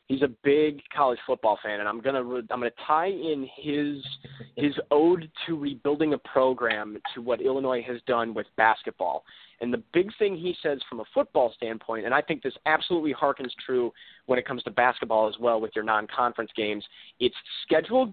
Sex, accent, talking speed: male, American, 195 wpm